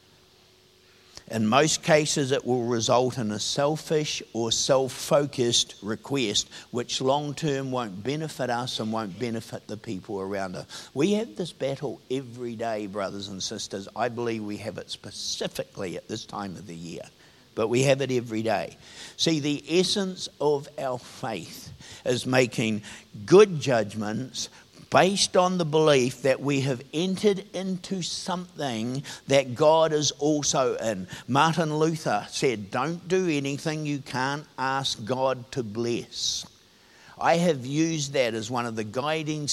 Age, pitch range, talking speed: 50-69, 115-150 Hz, 145 wpm